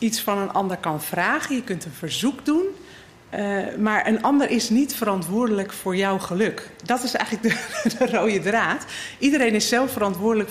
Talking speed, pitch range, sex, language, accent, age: 185 wpm, 190-235 Hz, female, Dutch, Dutch, 40-59